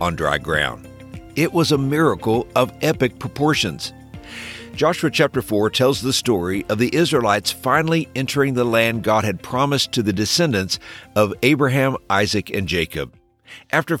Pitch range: 95-145 Hz